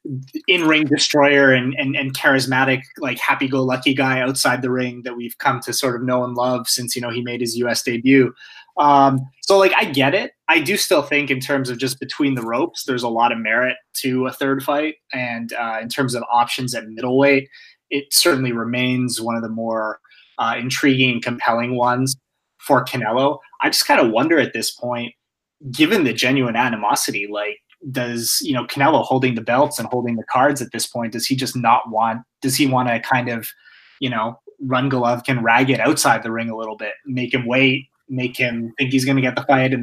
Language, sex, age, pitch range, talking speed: English, male, 20-39, 120-140 Hz, 210 wpm